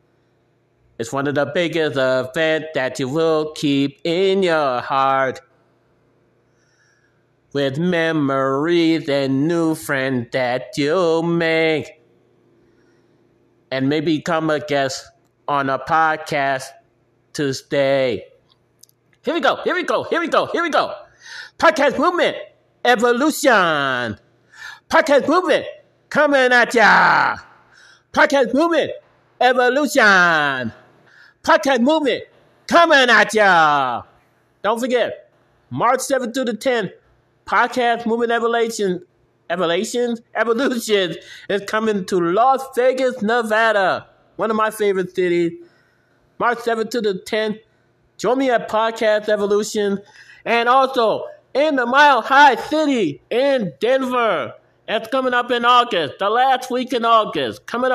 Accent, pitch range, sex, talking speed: American, 155-255 Hz, male, 115 wpm